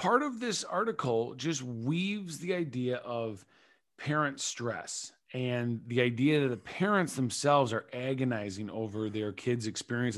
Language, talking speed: English, 140 wpm